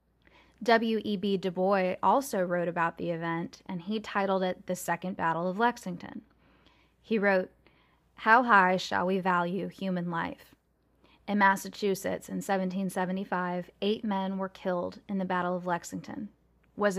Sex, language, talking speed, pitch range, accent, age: female, English, 150 wpm, 180-200 Hz, American, 10-29